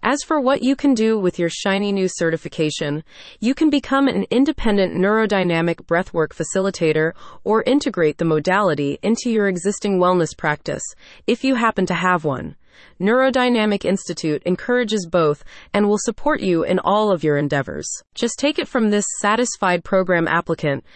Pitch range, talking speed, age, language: 170-235 Hz, 155 wpm, 30-49, English